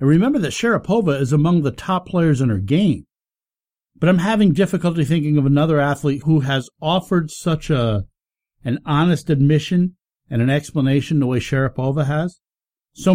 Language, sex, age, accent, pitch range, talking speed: English, male, 60-79, American, 125-180 Hz, 165 wpm